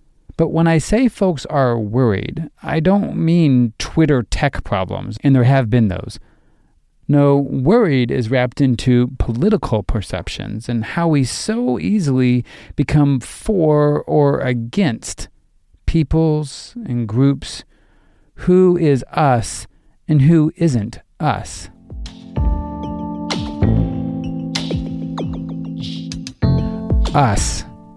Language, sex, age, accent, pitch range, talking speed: English, male, 40-59, American, 110-160 Hz, 95 wpm